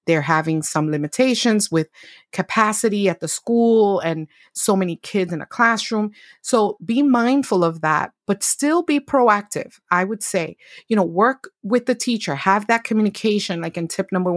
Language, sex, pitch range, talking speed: English, female, 175-230 Hz, 170 wpm